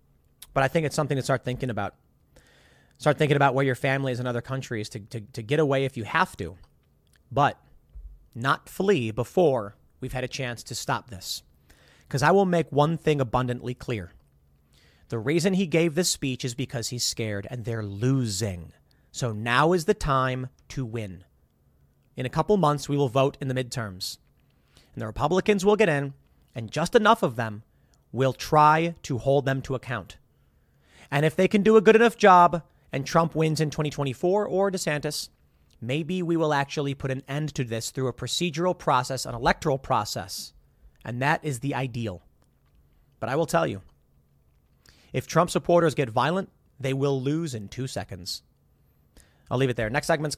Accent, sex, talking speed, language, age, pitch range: American, male, 185 wpm, English, 30-49, 105-155 Hz